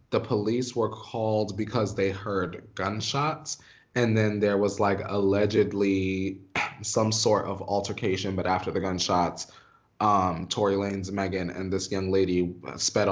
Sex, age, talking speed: male, 20-39, 140 wpm